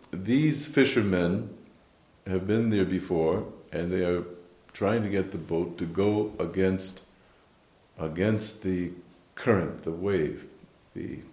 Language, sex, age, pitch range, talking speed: English, male, 50-69, 90-105 Hz, 120 wpm